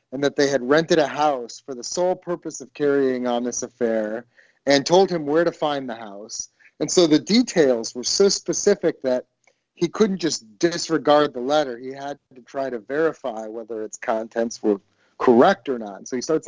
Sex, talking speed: male, 200 wpm